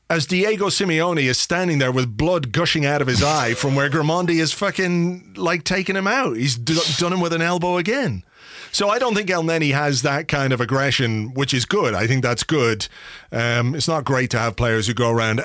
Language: English